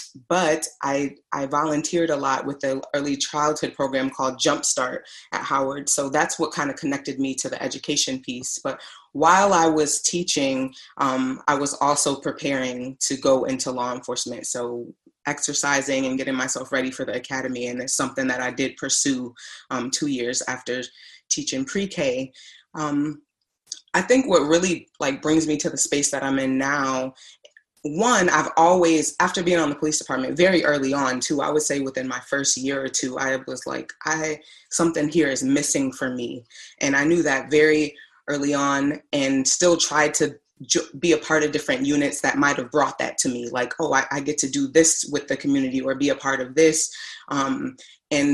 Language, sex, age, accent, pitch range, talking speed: English, female, 20-39, American, 135-155 Hz, 190 wpm